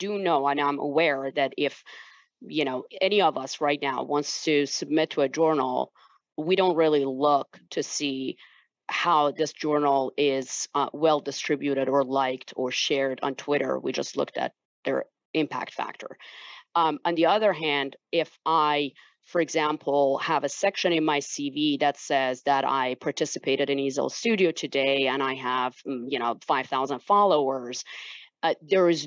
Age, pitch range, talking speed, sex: 40-59, 140-165 Hz, 165 wpm, female